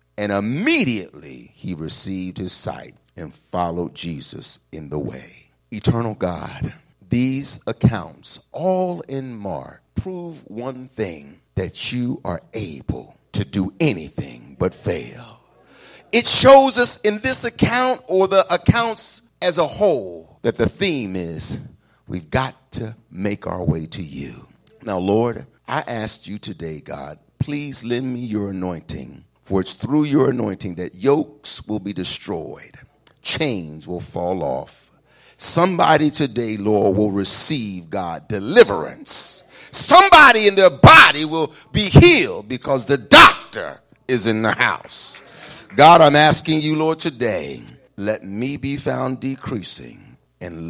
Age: 60-79